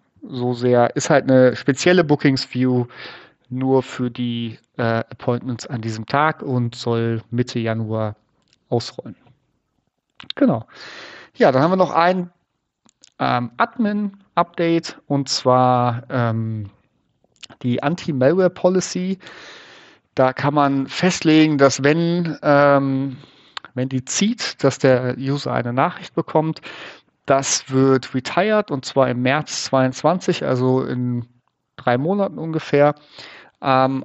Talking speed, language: 115 wpm, German